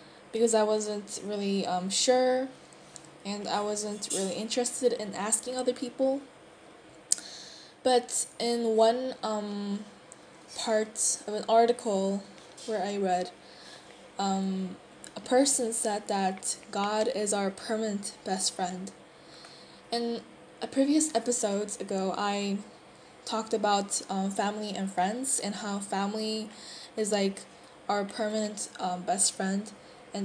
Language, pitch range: Korean, 195-230 Hz